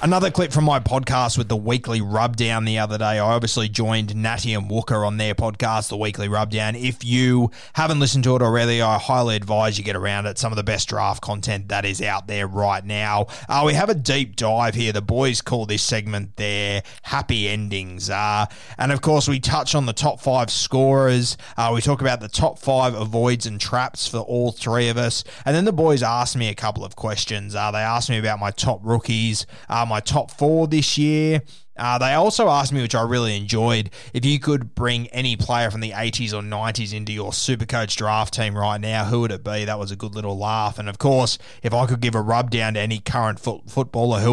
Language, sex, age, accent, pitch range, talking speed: English, male, 20-39, Australian, 105-125 Hz, 230 wpm